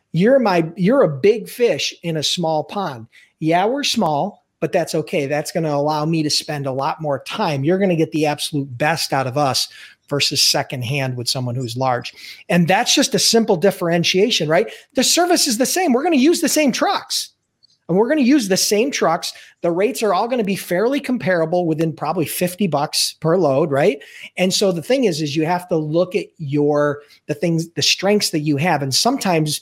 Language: English